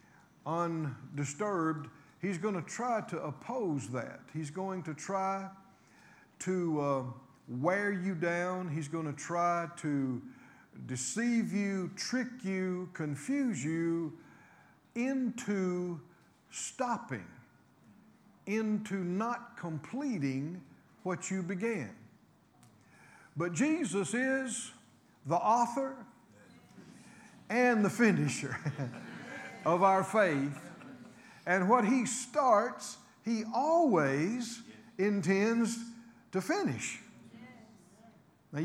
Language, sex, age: English, male, 50-69